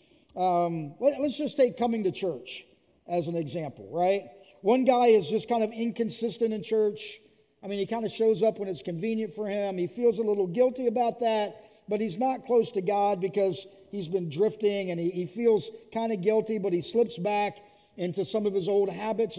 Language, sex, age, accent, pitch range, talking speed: English, male, 50-69, American, 180-225 Hz, 205 wpm